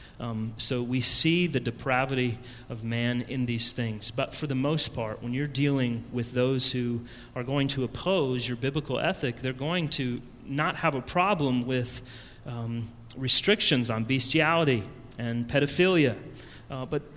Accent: American